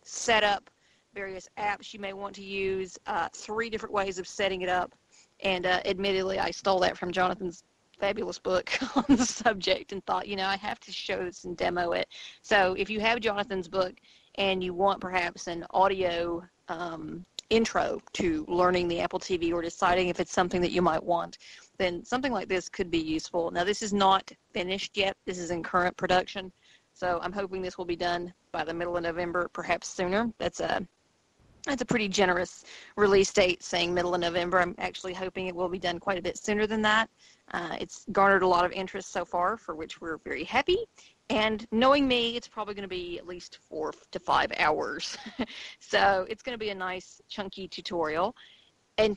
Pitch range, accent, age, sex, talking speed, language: 180-210 Hz, American, 40-59, female, 200 wpm, English